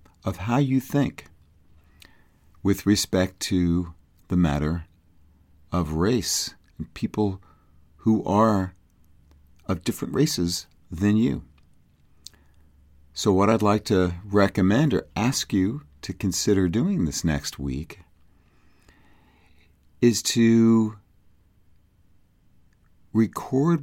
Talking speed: 95 wpm